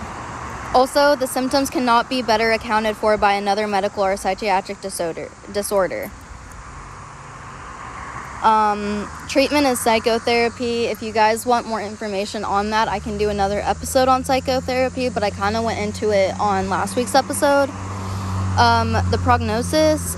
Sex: female